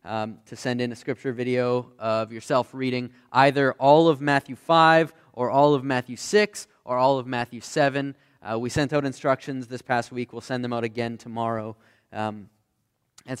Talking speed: 185 wpm